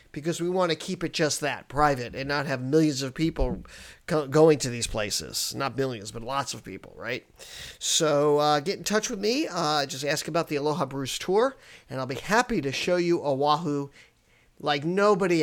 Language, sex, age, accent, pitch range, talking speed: English, male, 50-69, American, 140-190 Hz, 200 wpm